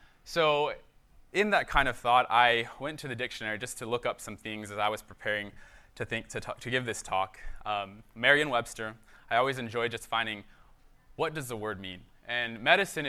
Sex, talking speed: male, 200 wpm